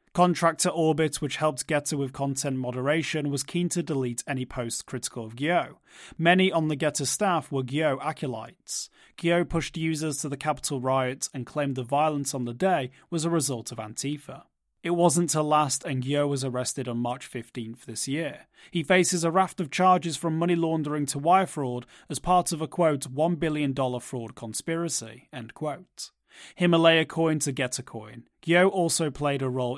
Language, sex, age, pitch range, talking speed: English, male, 30-49, 130-165 Hz, 180 wpm